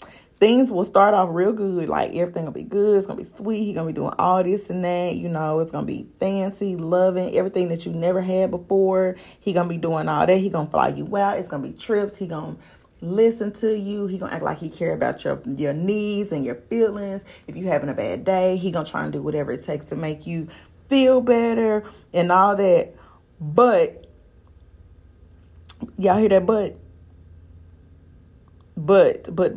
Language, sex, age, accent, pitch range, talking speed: English, female, 30-49, American, 160-205 Hz, 215 wpm